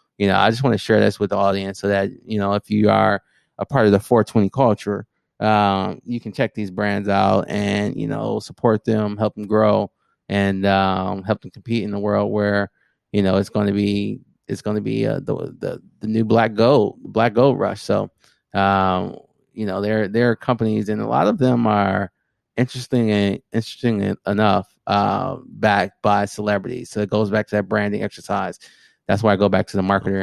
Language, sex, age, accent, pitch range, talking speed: English, male, 30-49, American, 95-110 Hz, 210 wpm